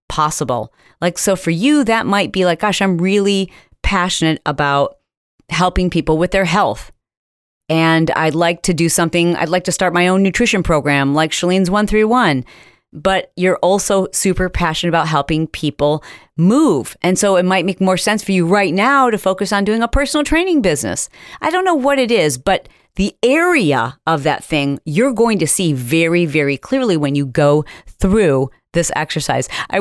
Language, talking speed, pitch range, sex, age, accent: English, 180 wpm, 165-235 Hz, female, 40-59, American